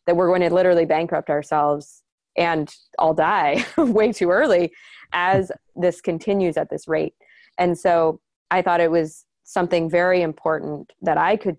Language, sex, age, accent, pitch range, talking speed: English, female, 20-39, American, 155-180 Hz, 160 wpm